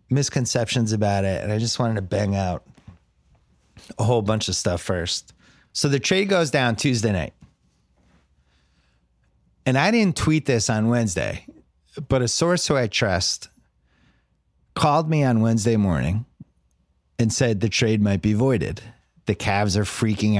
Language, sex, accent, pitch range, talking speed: English, male, American, 95-125 Hz, 155 wpm